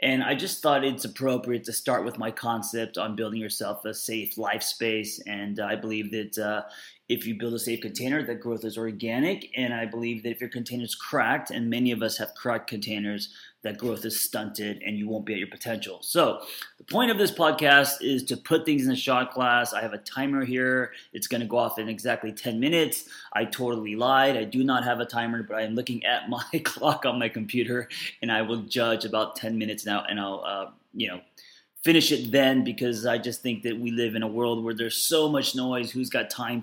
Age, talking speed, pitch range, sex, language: 20-39, 230 wpm, 110-130 Hz, male, English